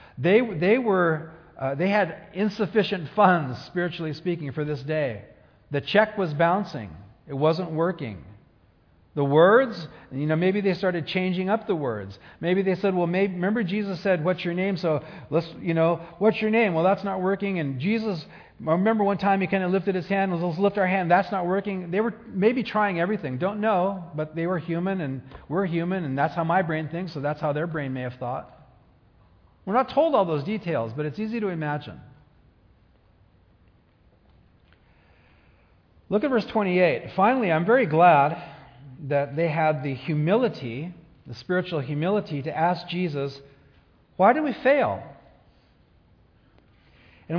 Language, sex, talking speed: English, male, 170 wpm